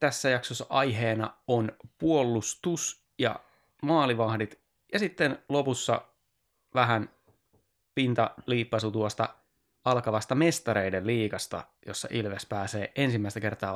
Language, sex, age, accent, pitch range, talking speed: Finnish, male, 30-49, native, 100-130 Hz, 90 wpm